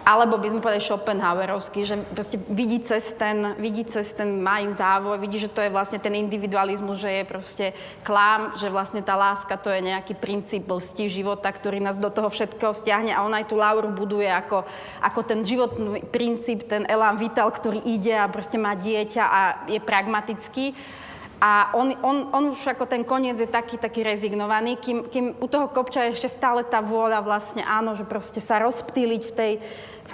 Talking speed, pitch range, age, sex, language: 190 wpm, 205-230 Hz, 30-49, female, Slovak